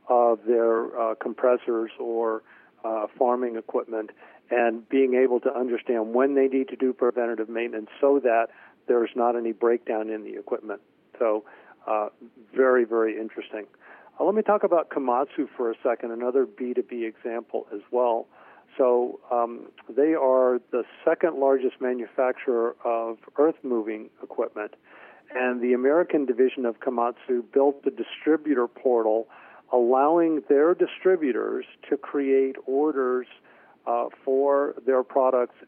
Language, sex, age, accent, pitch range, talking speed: English, male, 50-69, American, 115-135 Hz, 135 wpm